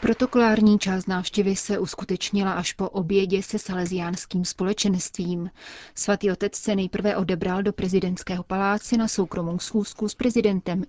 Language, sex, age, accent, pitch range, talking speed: Czech, female, 30-49, native, 185-210 Hz, 130 wpm